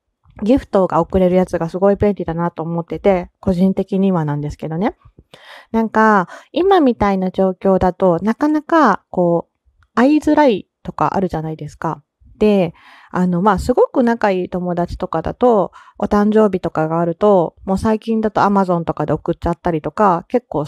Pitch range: 170-220 Hz